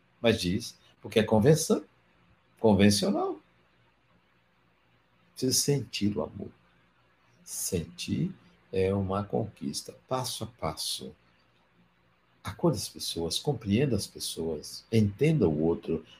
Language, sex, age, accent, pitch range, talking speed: Portuguese, male, 60-79, Brazilian, 80-130 Hz, 95 wpm